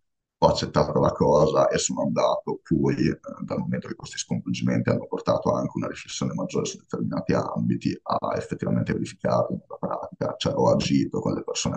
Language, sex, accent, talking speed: Italian, male, native, 175 wpm